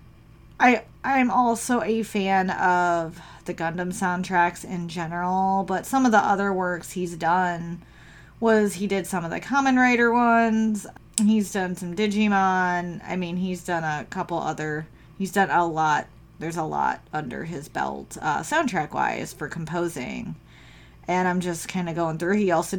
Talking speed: 165 wpm